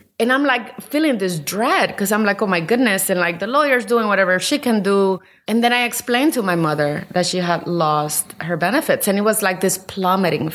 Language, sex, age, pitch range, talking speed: English, female, 30-49, 160-215 Hz, 230 wpm